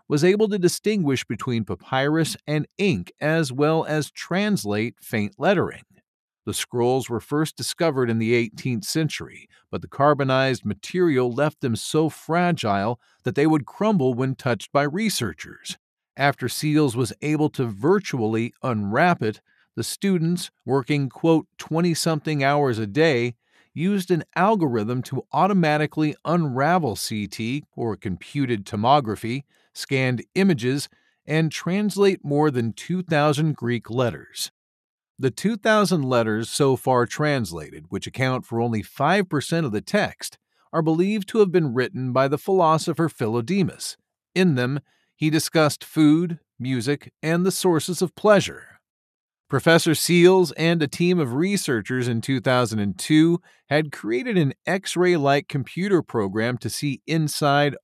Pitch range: 125-170 Hz